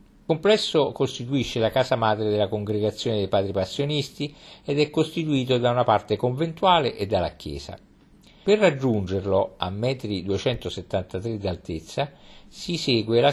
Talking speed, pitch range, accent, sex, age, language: 135 wpm, 100-130 Hz, native, male, 50-69, Italian